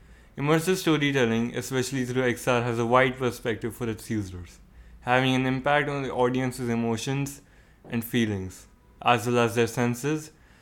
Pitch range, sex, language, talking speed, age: 115-135 Hz, male, English, 145 wpm, 20-39